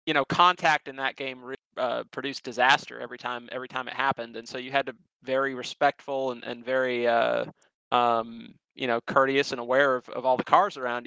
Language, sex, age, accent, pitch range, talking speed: English, male, 30-49, American, 120-140 Hz, 215 wpm